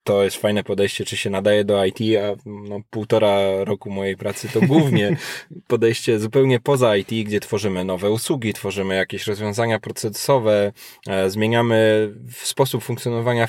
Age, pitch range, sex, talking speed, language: 20-39, 105-120 Hz, male, 140 wpm, Polish